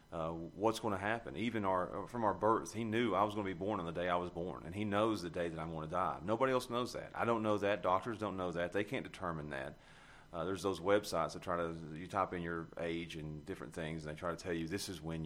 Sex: male